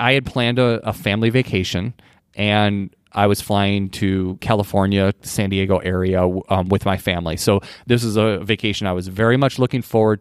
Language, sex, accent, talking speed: English, male, American, 180 wpm